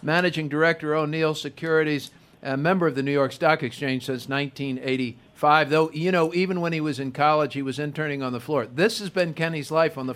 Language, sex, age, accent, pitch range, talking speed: English, male, 50-69, American, 140-180 Hz, 215 wpm